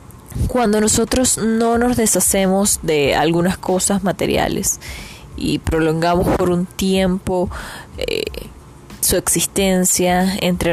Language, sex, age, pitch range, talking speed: Spanish, female, 10-29, 170-215 Hz, 100 wpm